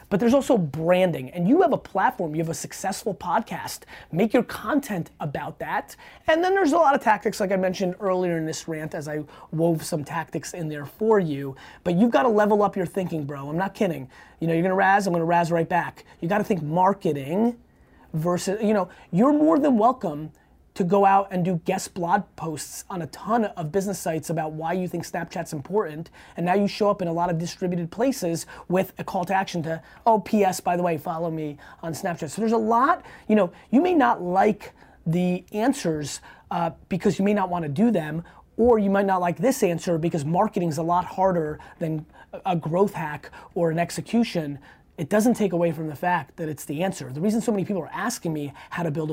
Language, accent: English, American